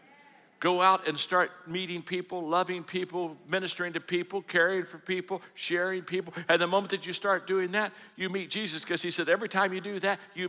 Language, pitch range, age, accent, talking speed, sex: English, 175-225 Hz, 60-79, American, 205 wpm, male